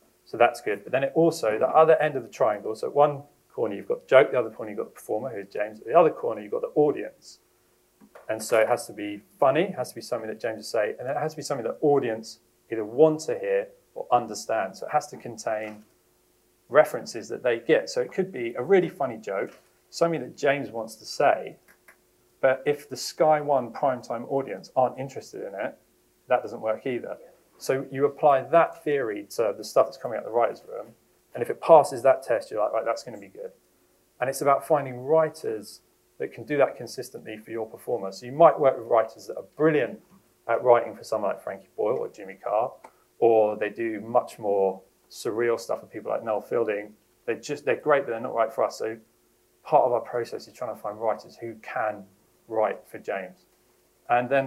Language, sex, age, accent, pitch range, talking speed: English, male, 30-49, British, 115-165 Hz, 225 wpm